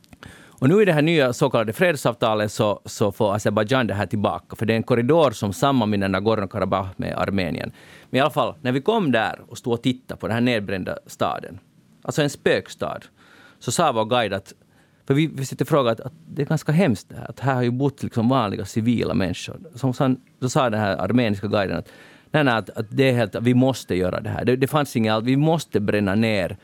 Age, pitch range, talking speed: 30-49, 110-145 Hz, 230 wpm